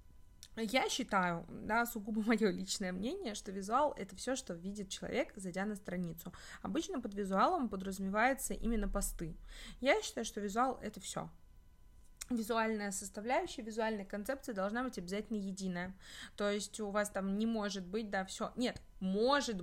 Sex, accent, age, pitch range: female, native, 20-39, 200-245 Hz